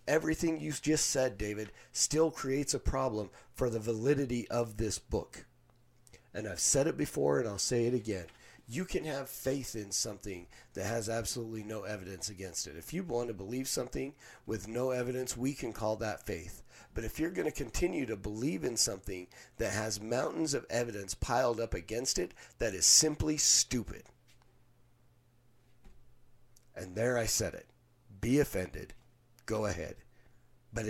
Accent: American